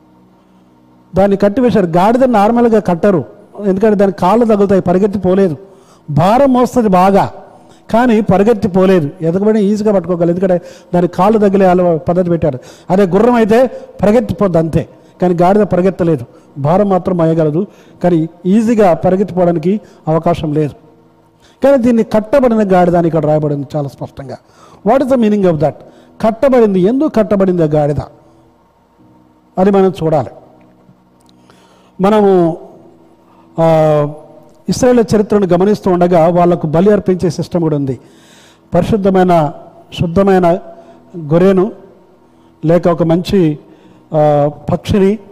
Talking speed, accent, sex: 110 wpm, native, male